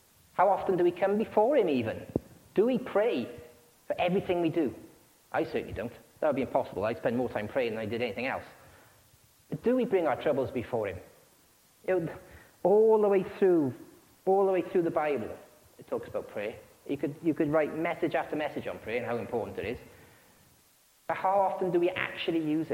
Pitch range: 140-195 Hz